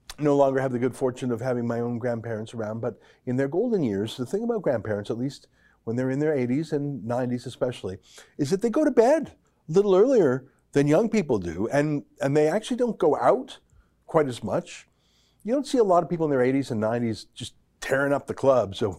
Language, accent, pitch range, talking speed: English, American, 125-175 Hz, 230 wpm